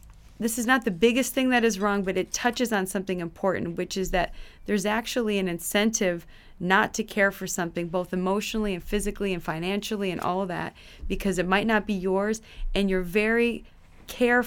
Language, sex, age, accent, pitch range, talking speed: English, female, 20-39, American, 180-215 Hz, 190 wpm